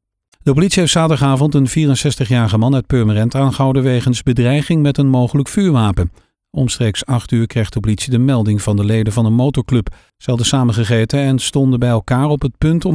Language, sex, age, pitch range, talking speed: Dutch, male, 40-59, 110-140 Hz, 190 wpm